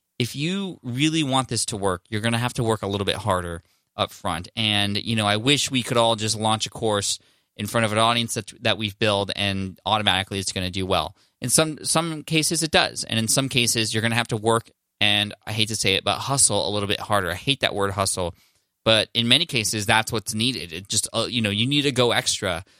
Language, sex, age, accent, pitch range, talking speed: English, male, 20-39, American, 100-120 Hz, 255 wpm